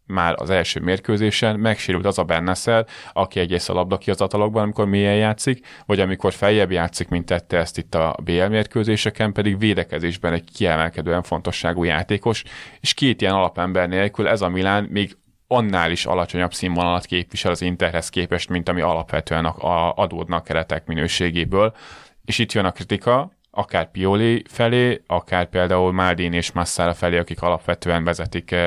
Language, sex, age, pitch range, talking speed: Hungarian, male, 30-49, 85-100 Hz, 155 wpm